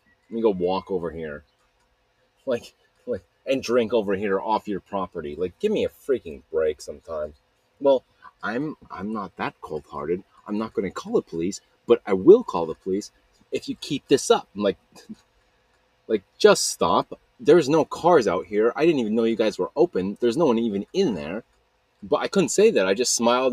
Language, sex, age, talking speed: English, male, 30-49, 200 wpm